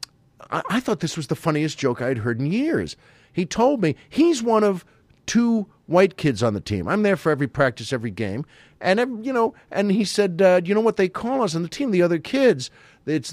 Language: English